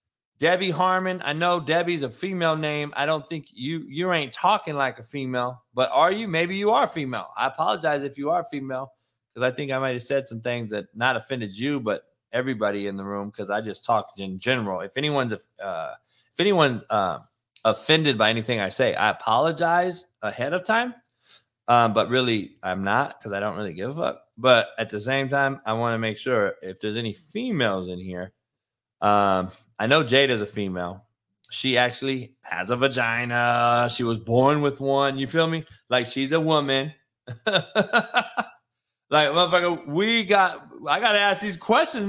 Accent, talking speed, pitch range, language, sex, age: American, 185 wpm, 115-165 Hz, English, male, 20-39